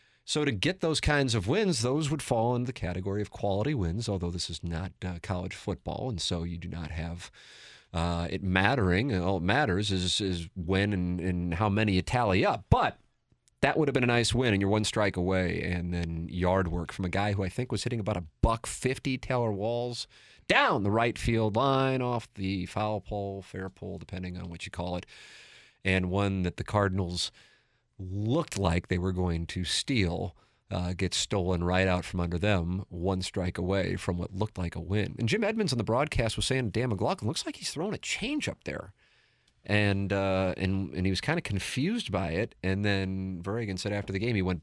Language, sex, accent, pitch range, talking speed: English, male, American, 90-115 Hz, 210 wpm